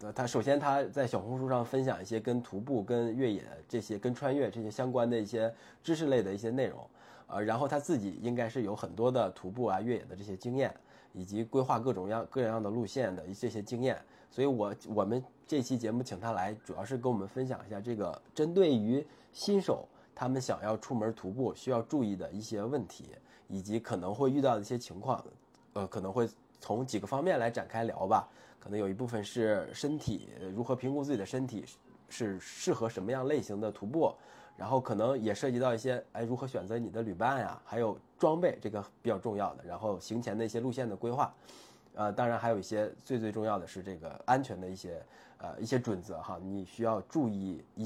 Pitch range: 105-130 Hz